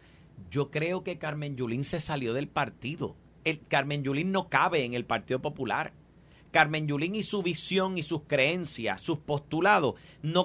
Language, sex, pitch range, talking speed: Spanish, male, 160-230 Hz, 160 wpm